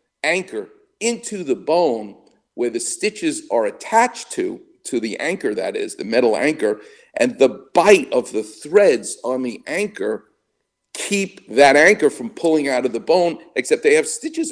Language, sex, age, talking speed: English, male, 50-69, 165 wpm